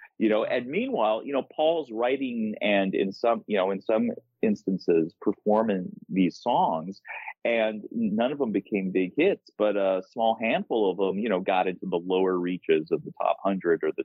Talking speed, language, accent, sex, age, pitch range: 190 wpm, English, American, male, 40-59, 95-140 Hz